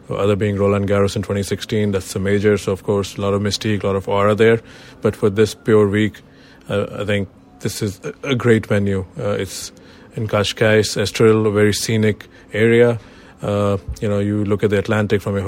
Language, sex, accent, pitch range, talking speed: English, male, Indian, 100-110 Hz, 200 wpm